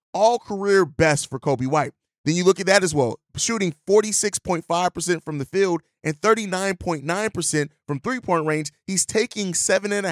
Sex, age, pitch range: male, 30-49, 145-170 Hz